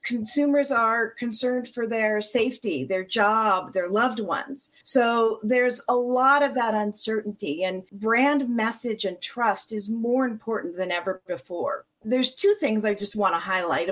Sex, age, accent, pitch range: female, 40-59, American, 195-245 Hz